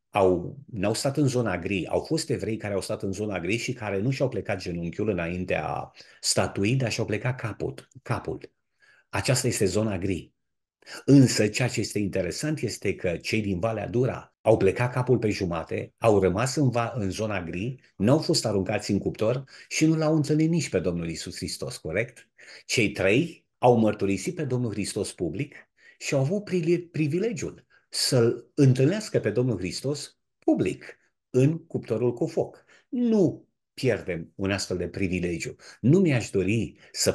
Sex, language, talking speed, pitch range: male, Romanian, 165 wpm, 95-130 Hz